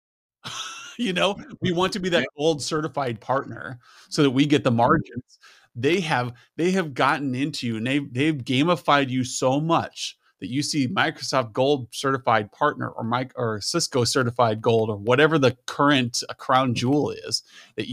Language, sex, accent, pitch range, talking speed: English, male, American, 120-160 Hz, 170 wpm